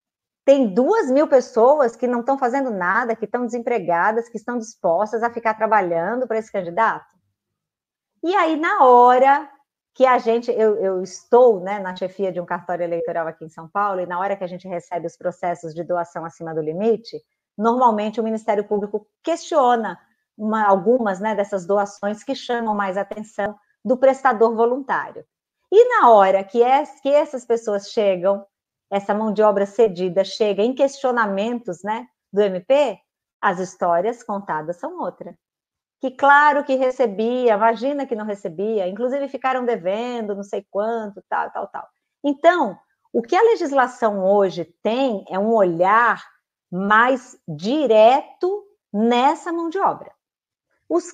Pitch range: 200-260 Hz